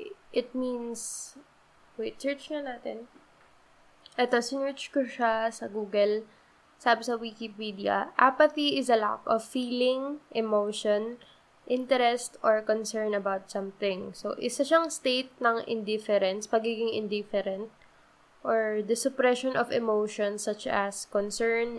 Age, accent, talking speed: 20-39, native, 115 wpm